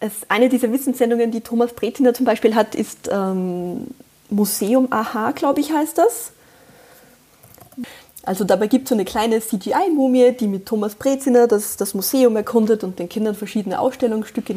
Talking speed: 160 wpm